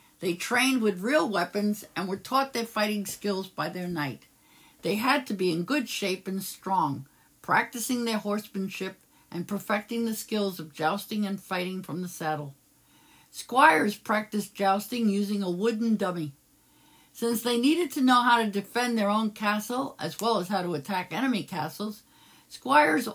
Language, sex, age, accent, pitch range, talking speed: English, female, 60-79, American, 180-230 Hz, 165 wpm